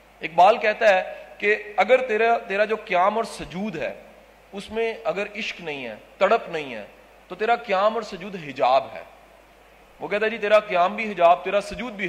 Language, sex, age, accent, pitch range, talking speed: English, male, 40-59, Indian, 175-225 Hz, 190 wpm